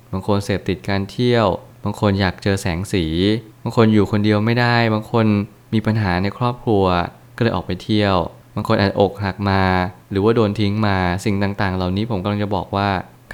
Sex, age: male, 20-39